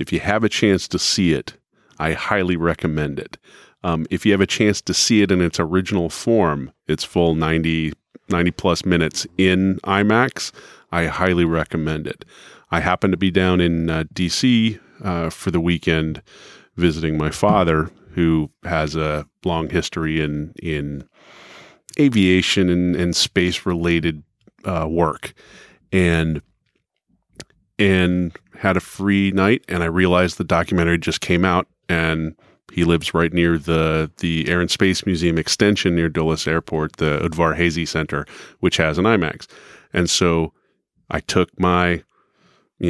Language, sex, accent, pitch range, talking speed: English, male, American, 80-95 Hz, 150 wpm